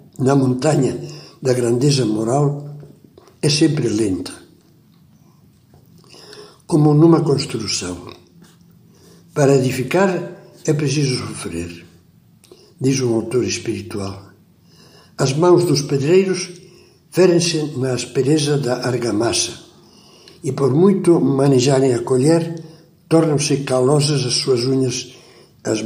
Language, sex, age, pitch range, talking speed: Portuguese, male, 60-79, 120-150 Hz, 95 wpm